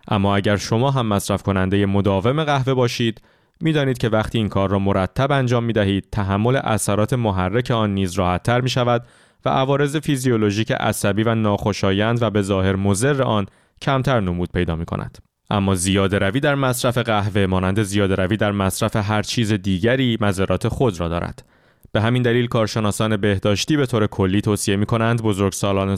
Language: Persian